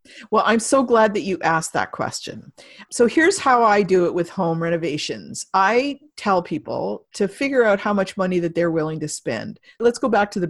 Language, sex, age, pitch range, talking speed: English, female, 50-69, 170-225 Hz, 210 wpm